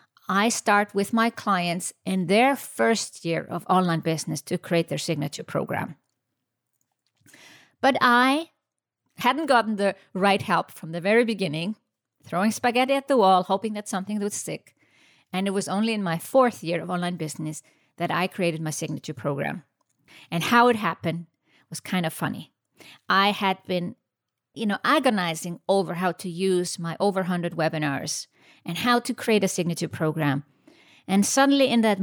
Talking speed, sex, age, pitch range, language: 165 wpm, female, 50-69, 170-210 Hz, English